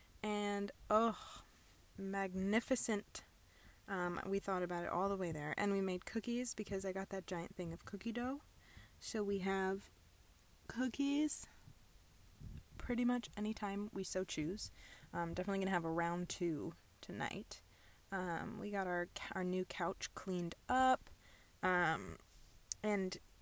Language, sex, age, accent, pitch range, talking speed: English, female, 20-39, American, 175-215 Hz, 140 wpm